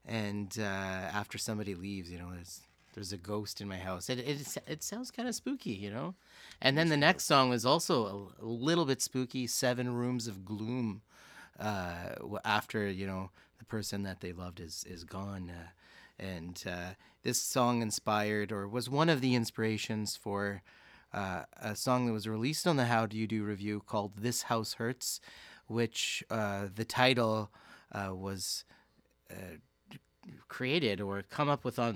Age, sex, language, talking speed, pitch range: 30-49, male, English, 175 wpm, 100-125 Hz